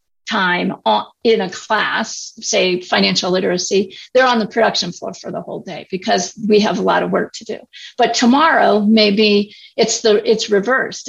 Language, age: English, 50-69